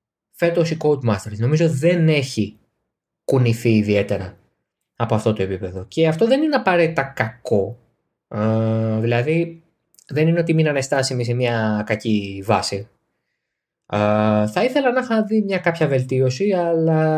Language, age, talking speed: Greek, 20-39, 130 wpm